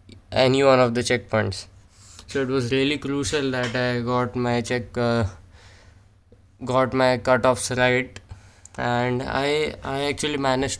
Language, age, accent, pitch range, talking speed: English, 20-39, Indian, 100-125 Hz, 140 wpm